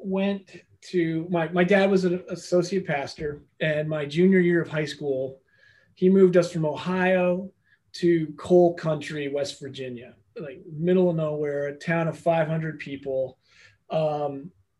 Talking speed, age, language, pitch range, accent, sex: 145 wpm, 30-49, English, 140-180 Hz, American, male